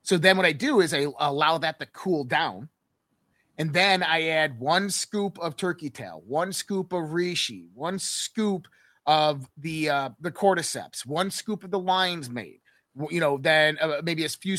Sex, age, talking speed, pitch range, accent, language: male, 30-49, 185 wpm, 145-185 Hz, American, English